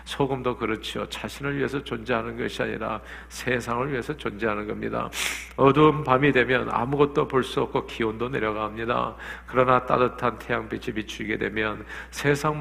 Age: 50-69